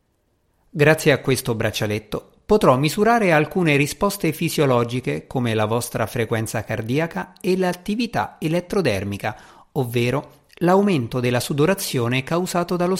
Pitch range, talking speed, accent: 115-165 Hz, 105 wpm, native